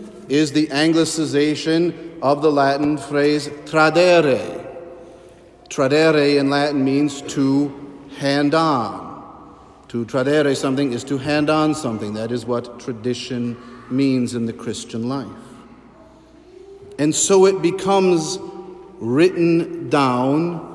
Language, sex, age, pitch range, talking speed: English, male, 50-69, 135-160 Hz, 110 wpm